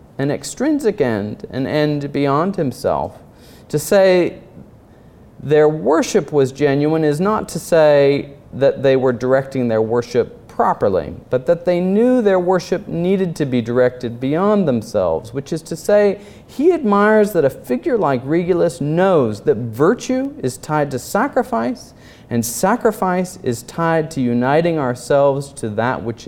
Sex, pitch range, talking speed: male, 125-185 Hz, 145 wpm